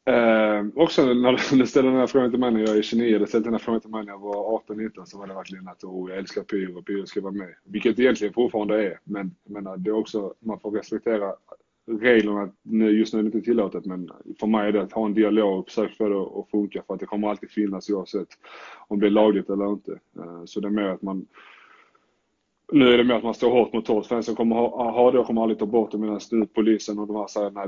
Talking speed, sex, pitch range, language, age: 235 wpm, male, 100-110 Hz, Swedish, 20-39